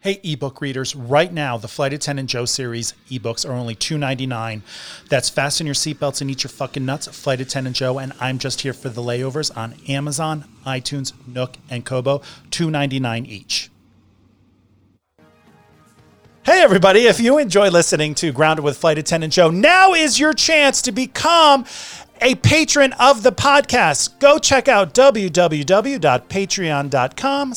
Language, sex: English, male